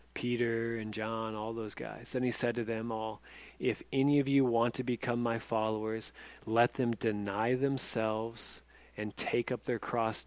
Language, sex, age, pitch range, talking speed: English, male, 30-49, 100-120 Hz, 175 wpm